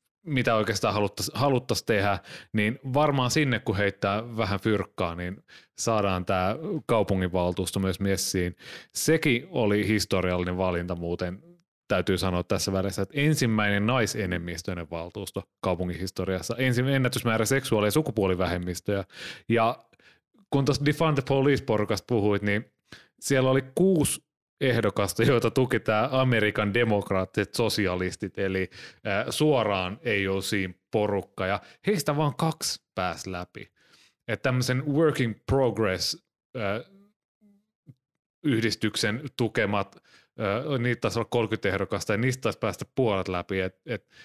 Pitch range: 100-130 Hz